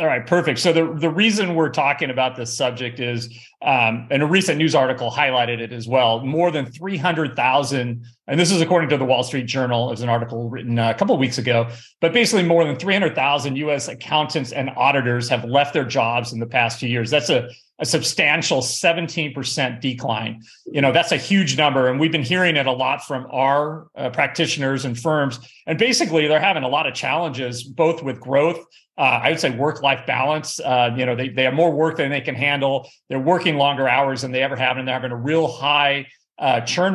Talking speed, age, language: 215 wpm, 40-59, English